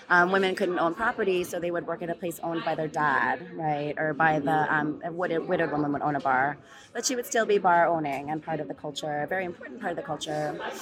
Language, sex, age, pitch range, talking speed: English, female, 30-49, 165-200 Hz, 255 wpm